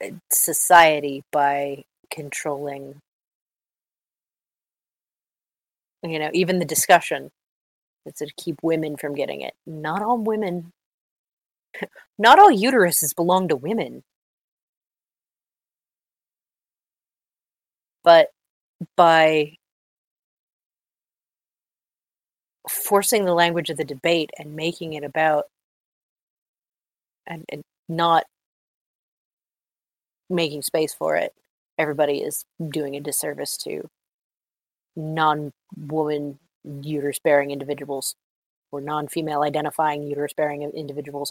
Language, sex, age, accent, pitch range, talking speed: English, female, 30-49, American, 145-170 Hz, 85 wpm